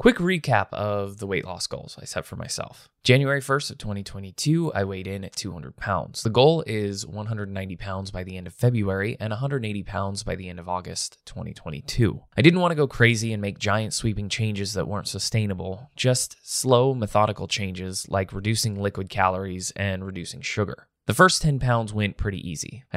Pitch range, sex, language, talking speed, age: 95-120 Hz, male, English, 190 wpm, 20-39